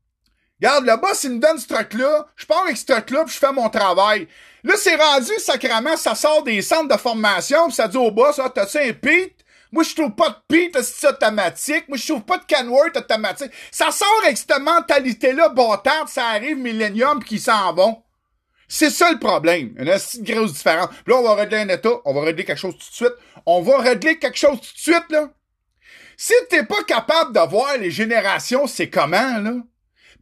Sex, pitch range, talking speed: male, 225-315 Hz, 230 wpm